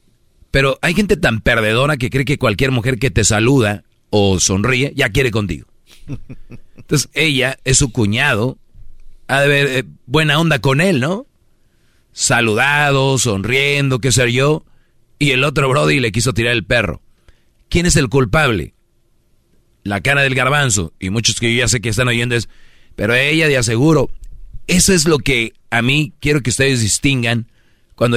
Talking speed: 165 wpm